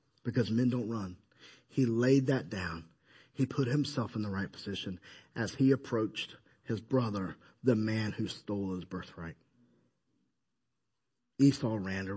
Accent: American